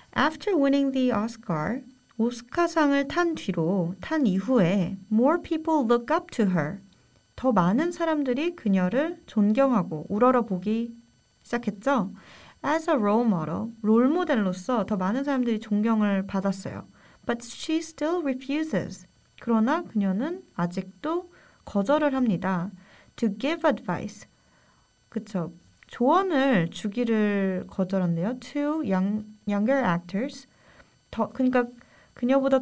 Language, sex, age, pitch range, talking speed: English, female, 40-59, 195-270 Hz, 105 wpm